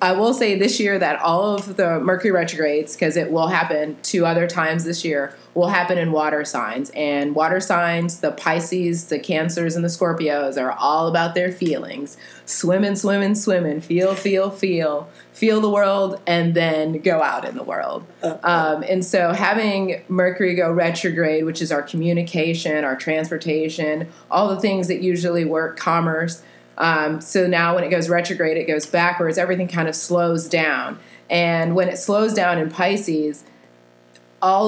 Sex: female